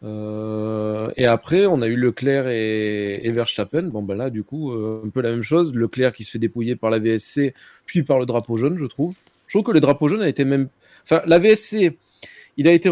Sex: male